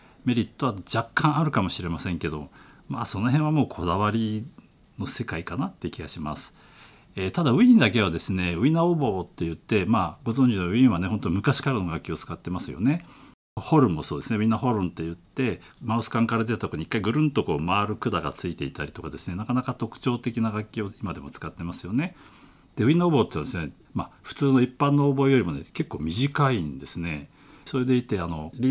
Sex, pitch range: male, 85-135 Hz